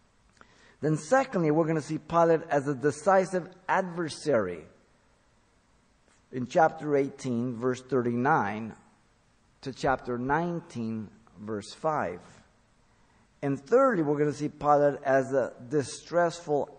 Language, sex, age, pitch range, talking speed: English, male, 50-69, 120-160 Hz, 110 wpm